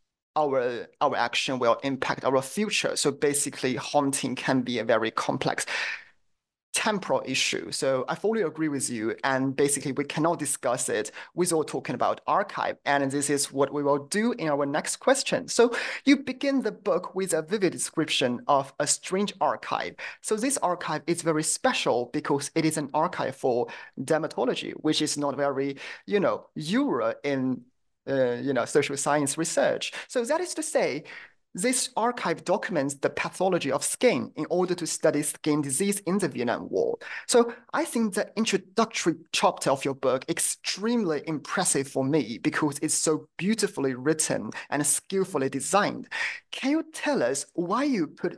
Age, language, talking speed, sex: 30-49, English, 165 wpm, male